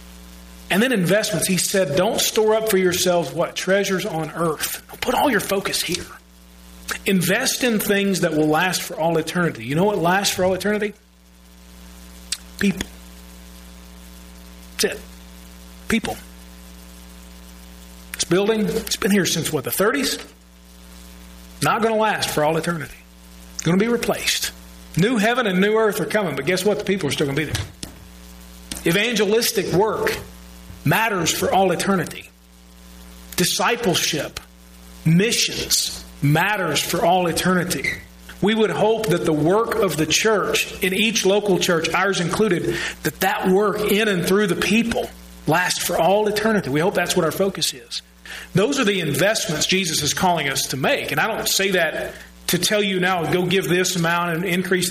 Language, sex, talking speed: English, male, 165 wpm